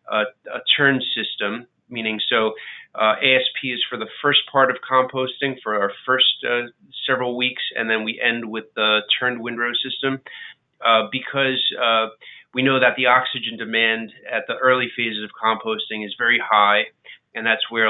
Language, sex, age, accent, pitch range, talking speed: English, male, 30-49, American, 105-125 Hz, 170 wpm